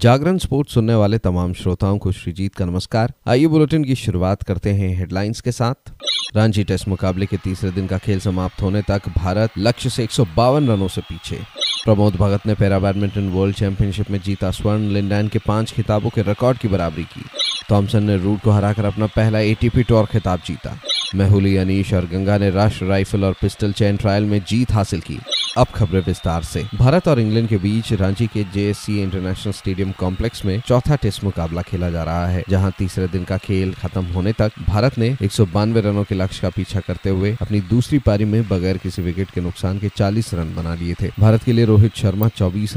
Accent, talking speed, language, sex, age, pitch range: native, 200 wpm, Hindi, male, 30-49, 95-110 Hz